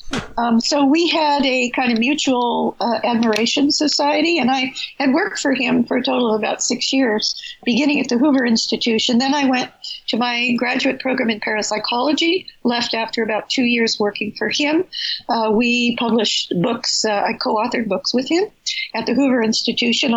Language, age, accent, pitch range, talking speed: English, 50-69, American, 215-265 Hz, 180 wpm